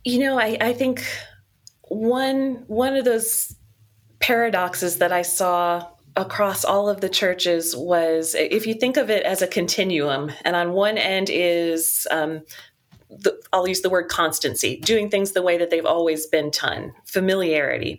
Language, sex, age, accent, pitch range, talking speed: English, female, 30-49, American, 170-225 Hz, 165 wpm